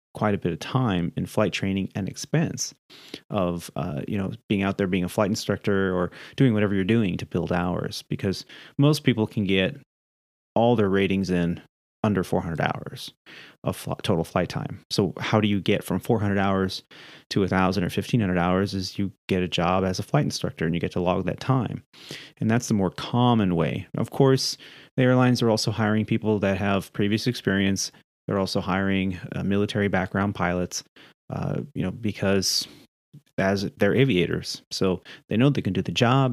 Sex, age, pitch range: male, 30-49, 95-115 Hz